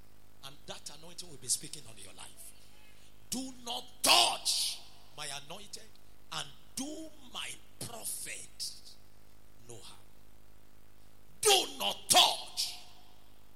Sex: male